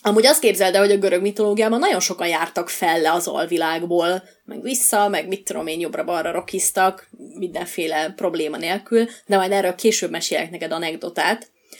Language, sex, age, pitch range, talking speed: Hungarian, female, 20-39, 175-235 Hz, 145 wpm